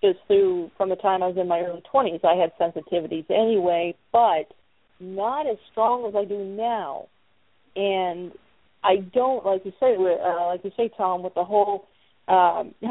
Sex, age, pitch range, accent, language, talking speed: female, 40-59, 175-205 Hz, American, English, 175 wpm